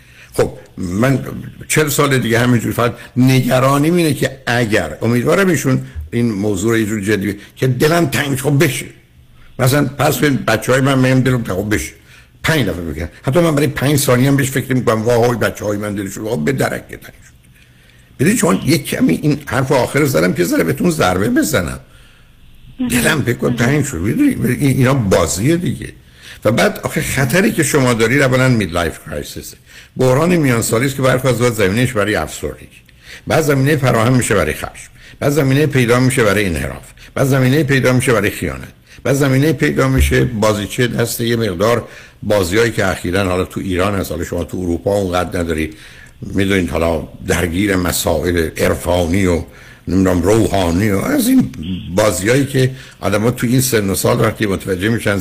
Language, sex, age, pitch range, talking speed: Persian, male, 60-79, 90-130 Hz, 165 wpm